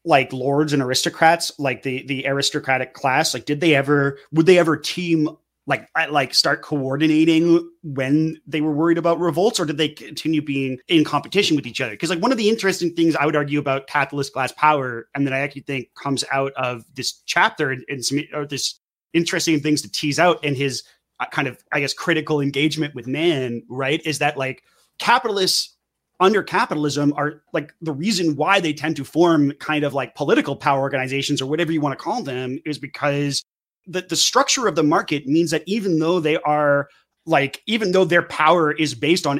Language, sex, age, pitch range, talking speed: English, male, 30-49, 140-165 Hz, 200 wpm